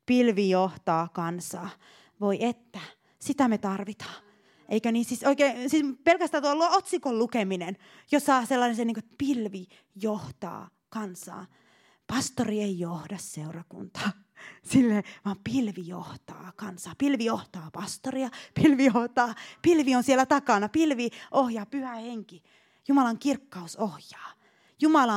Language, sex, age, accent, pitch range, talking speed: Finnish, female, 30-49, native, 190-270 Hz, 120 wpm